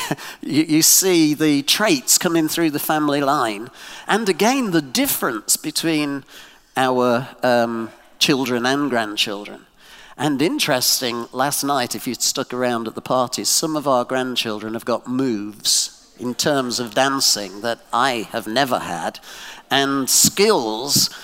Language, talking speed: English, 140 wpm